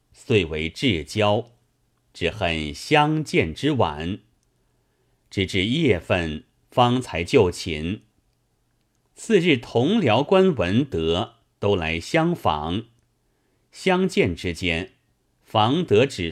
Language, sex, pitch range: Chinese, male, 90-130 Hz